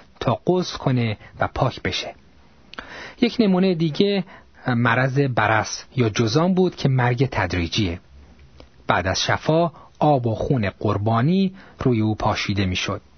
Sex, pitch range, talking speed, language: male, 100-160 Hz, 125 wpm, Persian